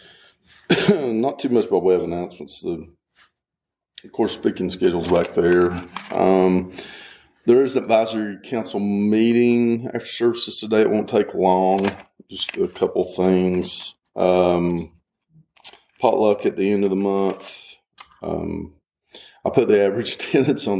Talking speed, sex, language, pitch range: 130 wpm, male, English, 95-115 Hz